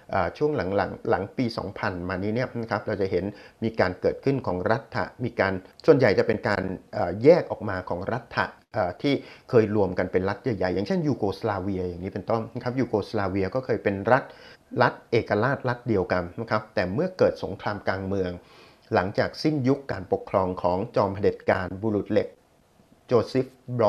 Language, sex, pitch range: Thai, male, 95-130 Hz